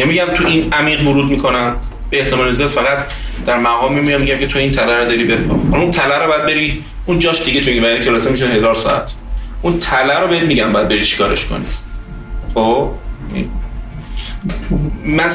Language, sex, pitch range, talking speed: Persian, male, 115-165 Hz, 180 wpm